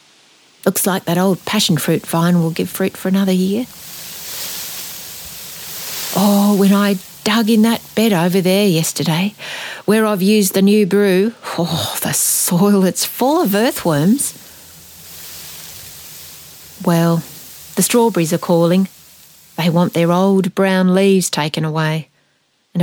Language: English